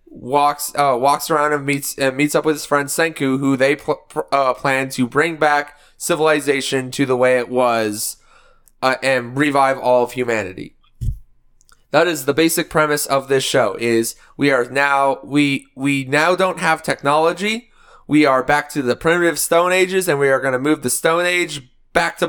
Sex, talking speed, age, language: male, 185 wpm, 20-39, English